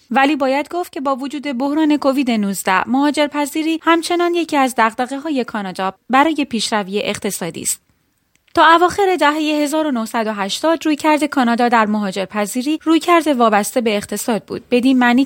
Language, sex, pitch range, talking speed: Persian, female, 215-295 Hz, 135 wpm